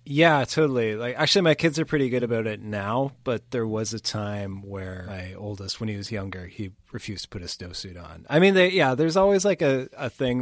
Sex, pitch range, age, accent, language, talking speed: male, 110-140 Hz, 30-49, American, English, 240 wpm